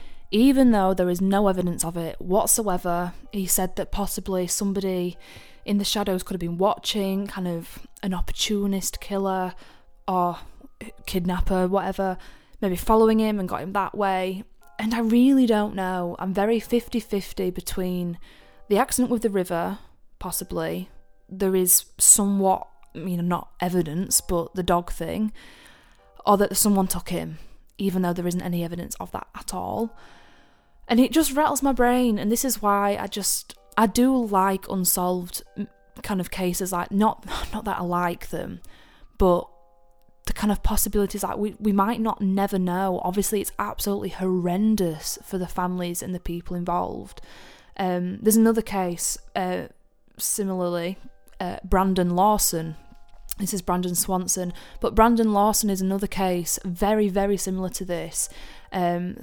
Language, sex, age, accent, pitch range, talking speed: English, female, 10-29, British, 180-210 Hz, 155 wpm